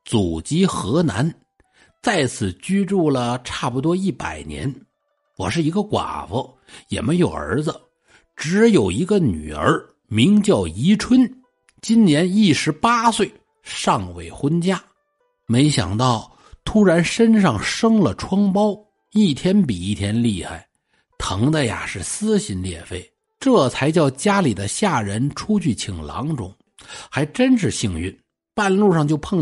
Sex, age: male, 60-79